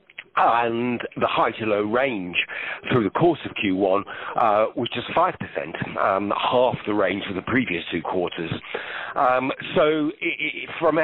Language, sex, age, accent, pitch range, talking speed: English, male, 50-69, British, 105-140 Hz, 160 wpm